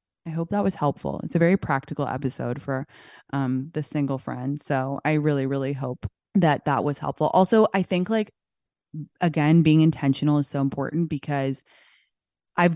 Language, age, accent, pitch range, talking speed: English, 20-39, American, 140-165 Hz, 170 wpm